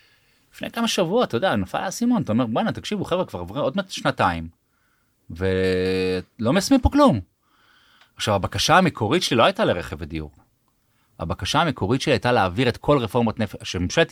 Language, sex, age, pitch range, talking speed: Hebrew, male, 30-49, 105-160 Hz, 160 wpm